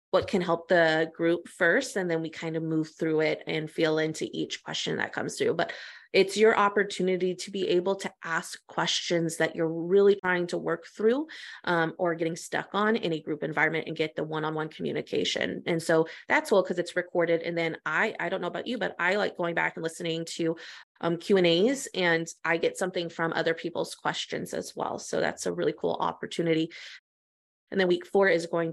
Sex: female